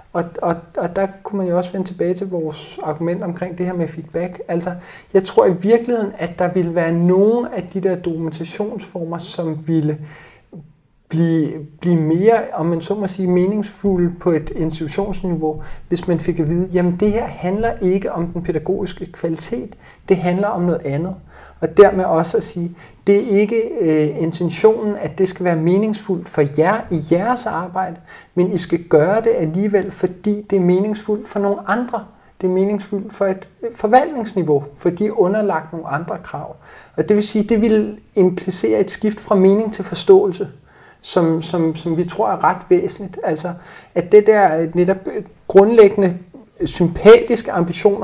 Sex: male